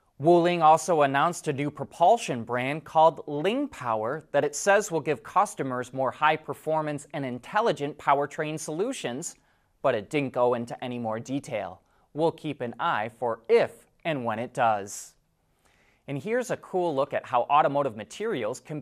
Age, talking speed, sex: 30-49, 165 wpm, male